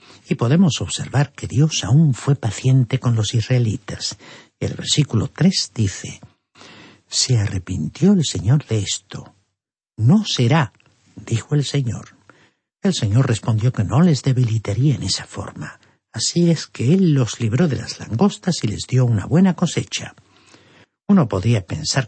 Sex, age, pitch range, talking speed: male, 60-79, 110-150 Hz, 145 wpm